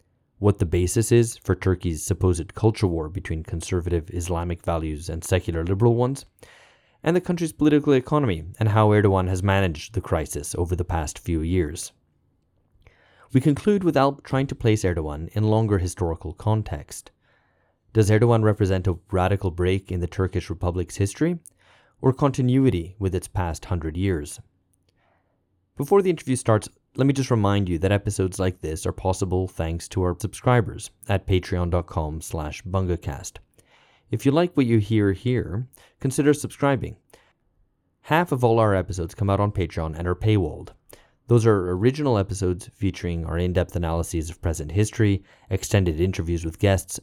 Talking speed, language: 155 wpm, English